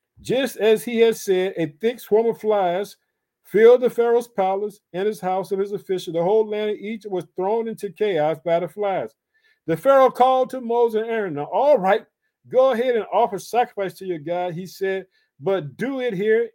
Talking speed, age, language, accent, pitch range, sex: 205 wpm, 50-69, English, American, 180-235 Hz, male